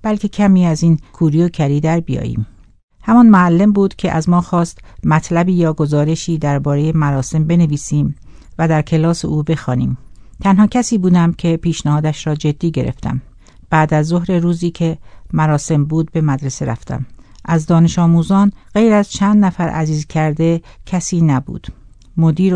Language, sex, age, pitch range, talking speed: Persian, female, 60-79, 145-180 Hz, 150 wpm